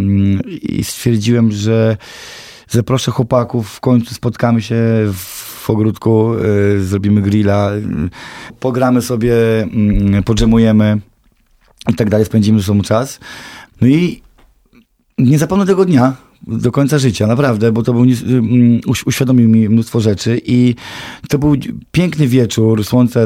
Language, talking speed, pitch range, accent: Polish, 130 wpm, 105-130 Hz, native